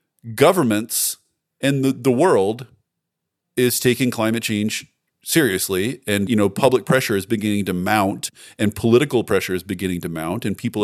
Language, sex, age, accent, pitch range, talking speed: English, male, 40-59, American, 100-125 Hz, 155 wpm